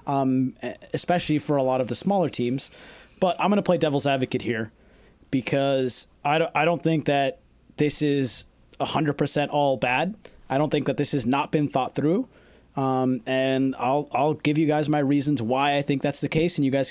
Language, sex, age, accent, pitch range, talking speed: English, male, 30-49, American, 135-165 Hz, 200 wpm